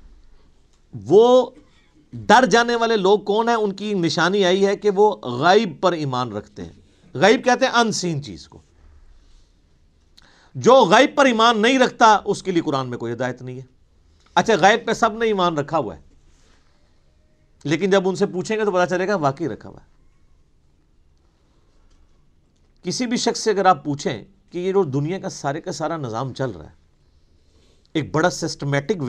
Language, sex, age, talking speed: Urdu, male, 50-69, 175 wpm